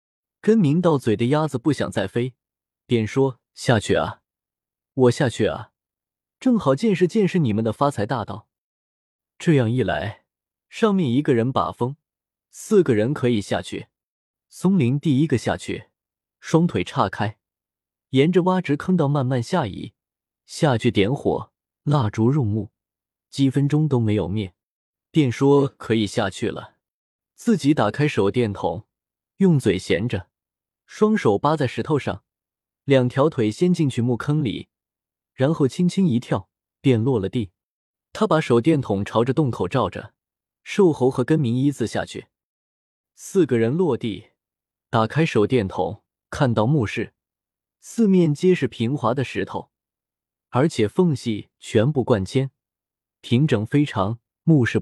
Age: 20-39